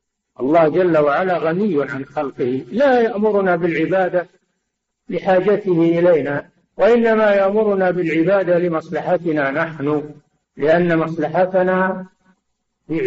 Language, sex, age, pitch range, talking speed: Arabic, male, 60-79, 145-185 Hz, 85 wpm